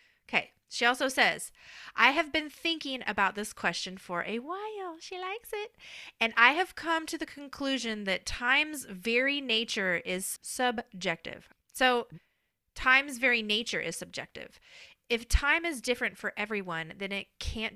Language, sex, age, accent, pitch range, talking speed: English, female, 30-49, American, 190-265 Hz, 150 wpm